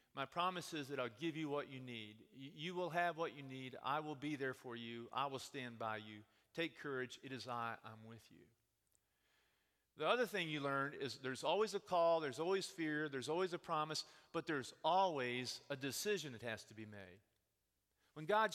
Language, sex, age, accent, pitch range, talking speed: English, male, 40-59, American, 120-175 Hz, 205 wpm